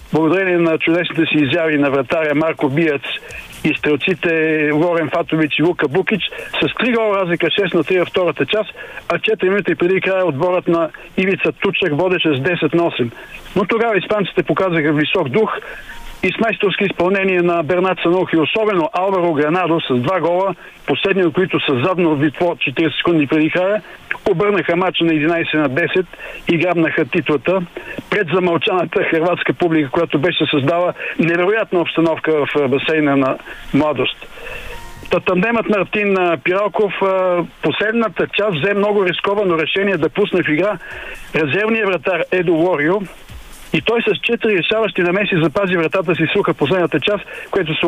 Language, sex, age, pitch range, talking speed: Bulgarian, male, 60-79, 160-195 Hz, 155 wpm